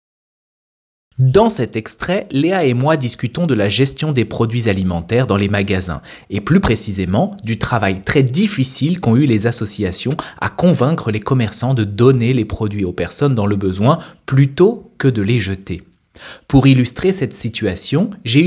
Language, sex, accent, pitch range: French, male, French, 105-160 Hz